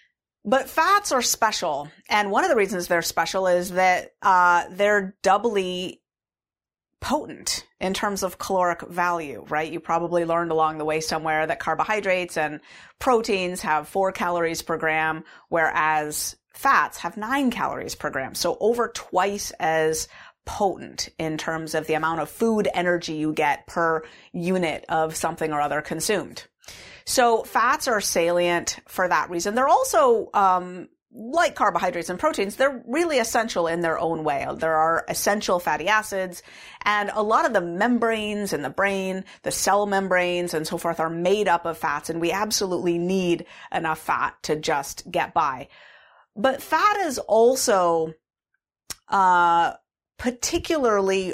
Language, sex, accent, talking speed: English, female, American, 150 wpm